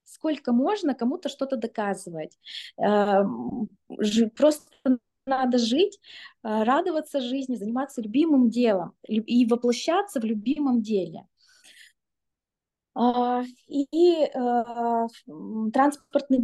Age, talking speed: 20-39, 75 wpm